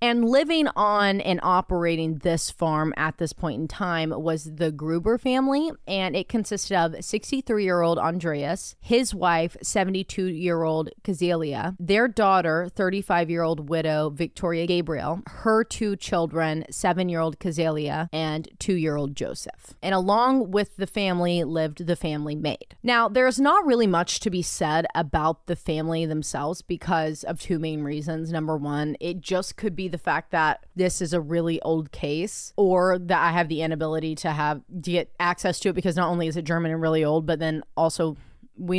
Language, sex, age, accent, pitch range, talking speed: English, female, 20-39, American, 160-190 Hz, 165 wpm